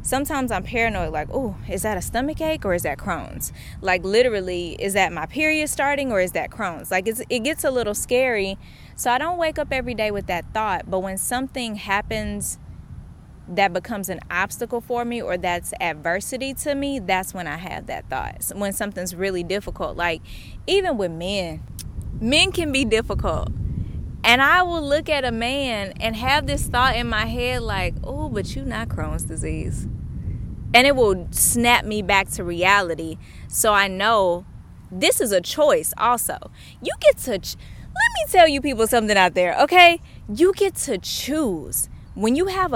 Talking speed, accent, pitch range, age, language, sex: 185 wpm, American, 195-280 Hz, 20-39, English, female